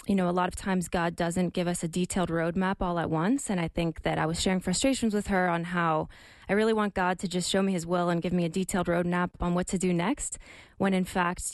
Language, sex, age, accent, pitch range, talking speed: English, female, 20-39, American, 175-195 Hz, 270 wpm